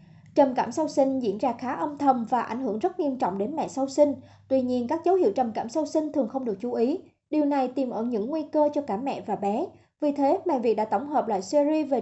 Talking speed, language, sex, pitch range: 275 wpm, Vietnamese, male, 230-300 Hz